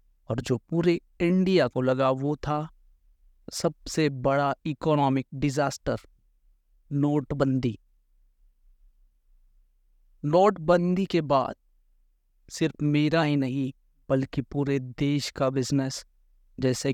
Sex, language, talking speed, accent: male, Hindi, 90 wpm, native